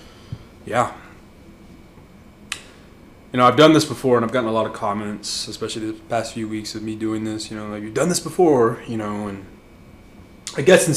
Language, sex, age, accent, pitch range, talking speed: English, male, 20-39, American, 105-120 Hz, 195 wpm